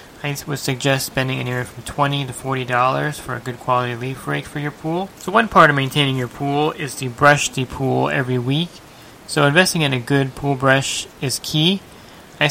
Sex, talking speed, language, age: male, 200 wpm, English, 20-39